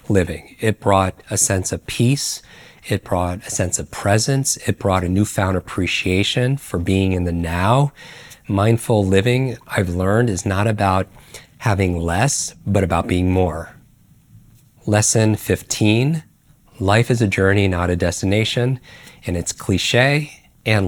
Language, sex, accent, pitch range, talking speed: English, male, American, 95-115 Hz, 140 wpm